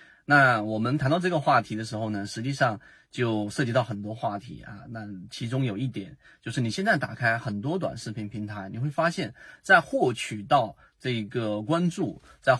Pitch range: 110-145 Hz